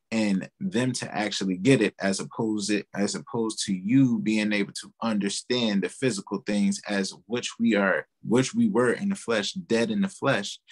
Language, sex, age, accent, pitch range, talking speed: English, male, 20-39, American, 100-135 Hz, 180 wpm